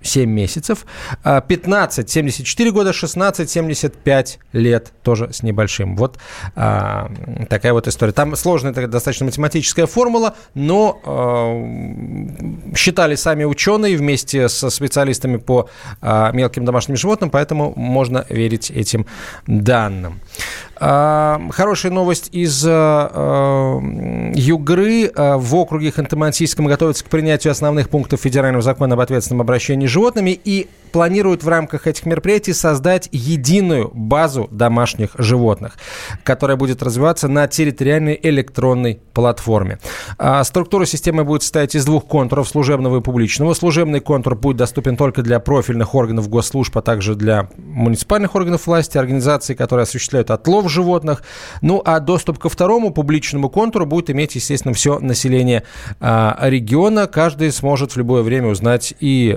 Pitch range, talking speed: 120-160 Hz, 120 wpm